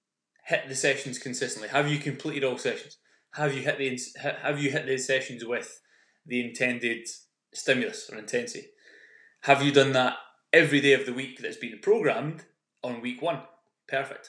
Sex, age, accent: male, 20-39, British